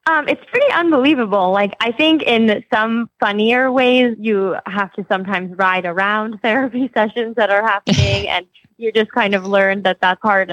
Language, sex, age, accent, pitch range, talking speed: English, female, 20-39, American, 180-205 Hz, 175 wpm